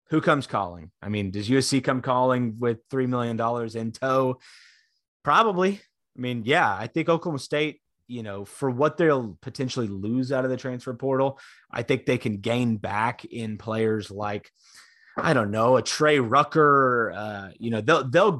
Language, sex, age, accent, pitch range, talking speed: English, male, 30-49, American, 115-145 Hz, 175 wpm